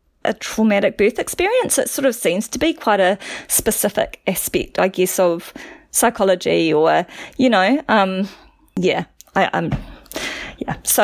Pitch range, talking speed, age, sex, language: 160-215 Hz, 145 wpm, 30-49, female, English